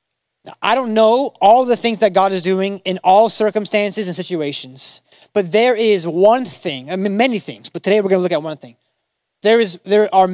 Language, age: English, 20-39